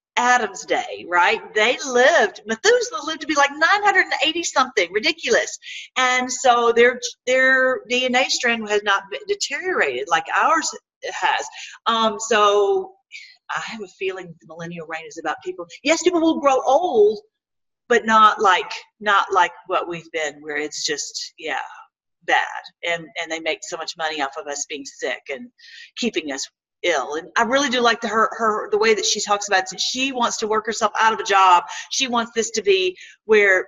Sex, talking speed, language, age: female, 180 wpm, English, 40-59